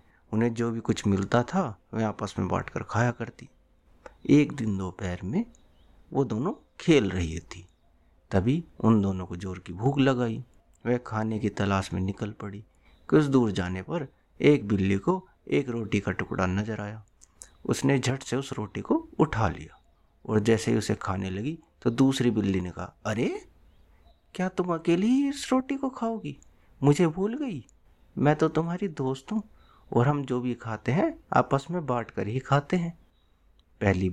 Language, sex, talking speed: Hindi, male, 170 wpm